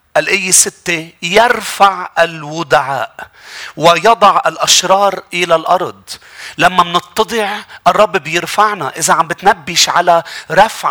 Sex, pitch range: male, 160-210 Hz